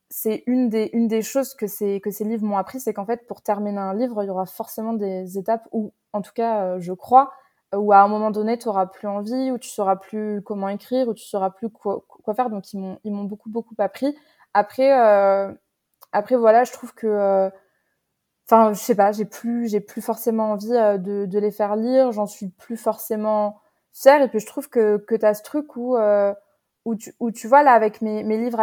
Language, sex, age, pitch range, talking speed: French, female, 20-39, 200-230 Hz, 240 wpm